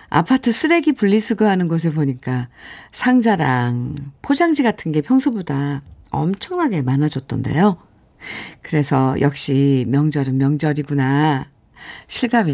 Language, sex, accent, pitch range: Korean, female, native, 145-225 Hz